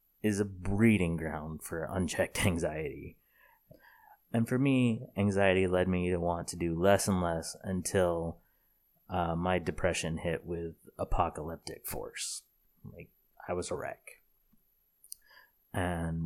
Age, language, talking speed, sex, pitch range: 30-49, English, 125 wpm, male, 85-95 Hz